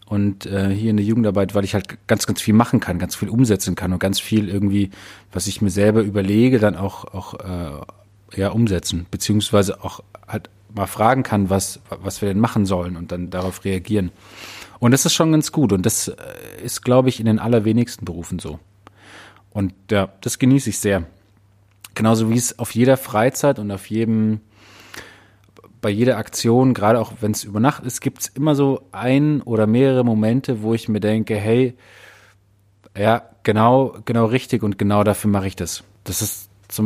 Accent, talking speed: German, 185 wpm